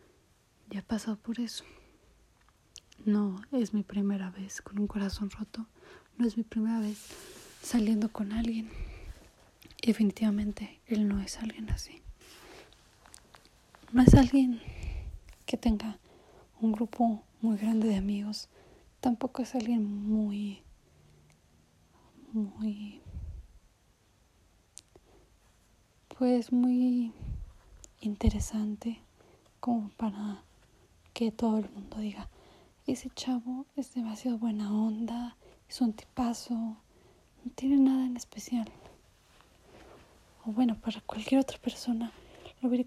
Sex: female